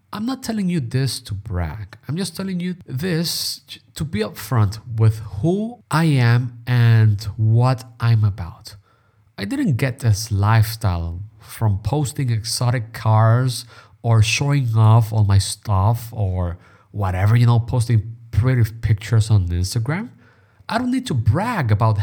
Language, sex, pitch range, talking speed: English, male, 105-130 Hz, 145 wpm